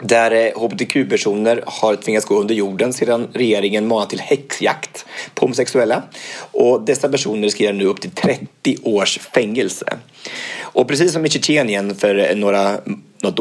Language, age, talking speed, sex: English, 30-49, 145 wpm, male